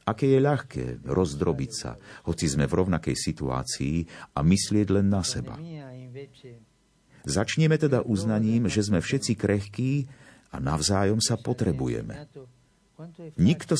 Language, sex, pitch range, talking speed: Slovak, male, 90-130 Hz, 115 wpm